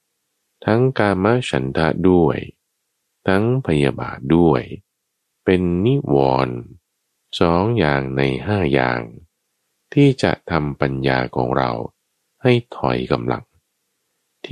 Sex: male